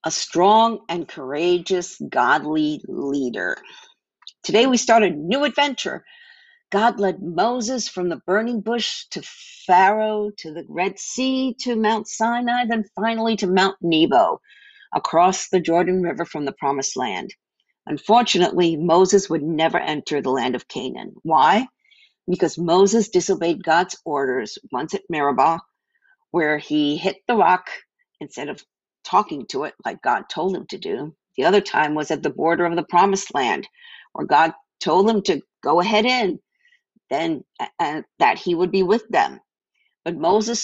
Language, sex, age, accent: English, female, 50-69, American